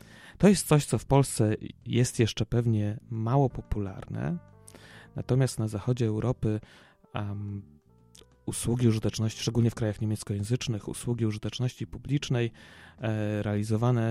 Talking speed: 115 wpm